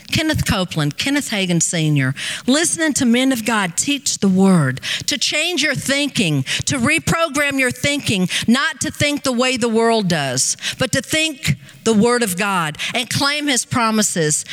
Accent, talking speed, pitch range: American, 165 wpm, 175-255 Hz